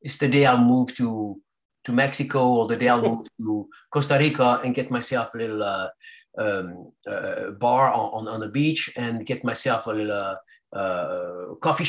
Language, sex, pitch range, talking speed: English, male, 120-150 Hz, 185 wpm